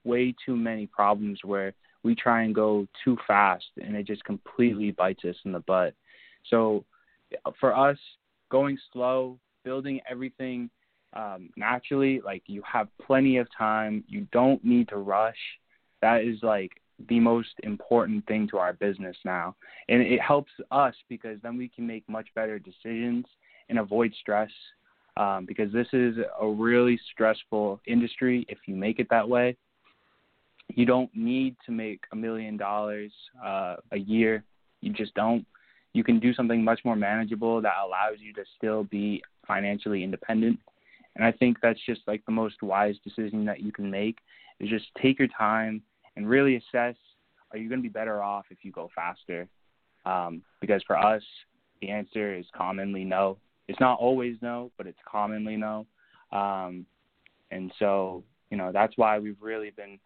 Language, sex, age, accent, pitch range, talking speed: English, male, 20-39, American, 105-120 Hz, 170 wpm